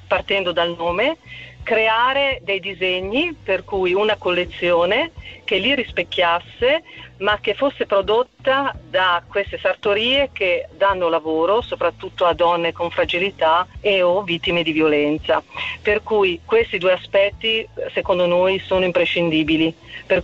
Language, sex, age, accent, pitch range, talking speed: Italian, female, 40-59, native, 165-205 Hz, 125 wpm